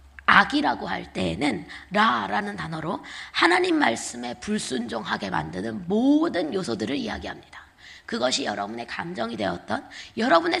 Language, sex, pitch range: Korean, female, 235-355 Hz